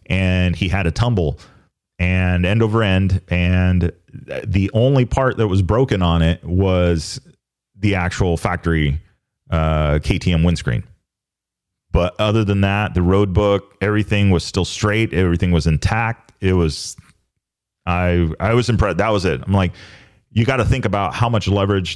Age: 30-49